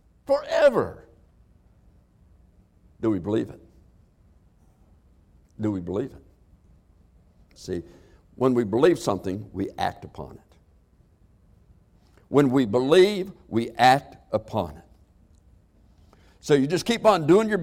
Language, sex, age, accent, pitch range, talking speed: English, male, 60-79, American, 90-140 Hz, 110 wpm